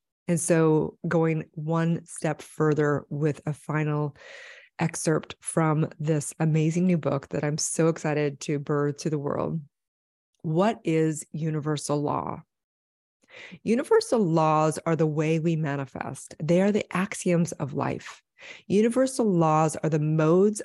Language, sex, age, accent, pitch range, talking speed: English, female, 30-49, American, 150-185 Hz, 135 wpm